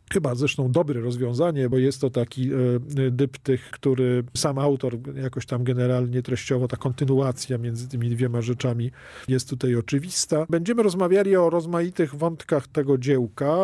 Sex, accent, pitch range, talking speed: male, native, 130-155 Hz, 140 wpm